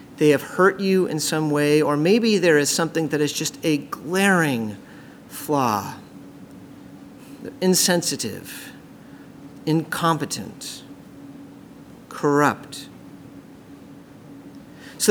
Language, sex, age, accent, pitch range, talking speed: English, male, 40-59, American, 155-215 Hz, 85 wpm